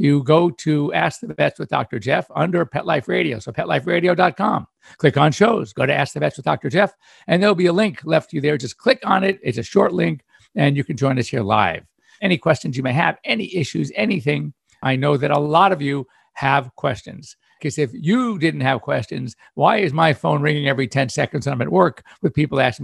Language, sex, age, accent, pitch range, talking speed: English, male, 60-79, American, 135-175 Hz, 225 wpm